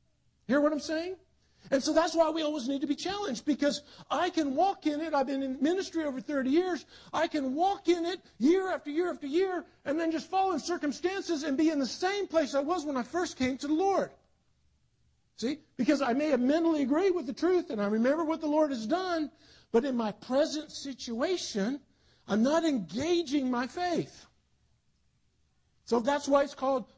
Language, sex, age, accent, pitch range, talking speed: English, male, 50-69, American, 260-335 Hz, 200 wpm